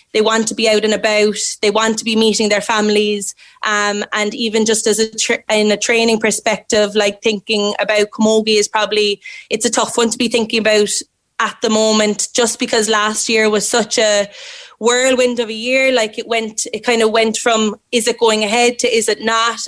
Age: 20-39